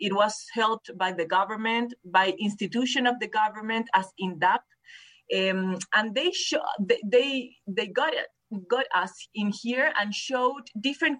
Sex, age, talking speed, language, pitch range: female, 30-49, 145 wpm, English, 210-260 Hz